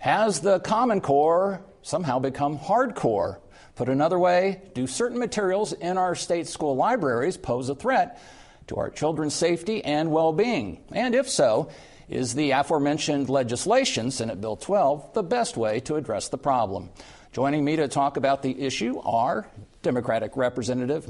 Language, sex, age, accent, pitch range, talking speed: English, male, 50-69, American, 125-165 Hz, 155 wpm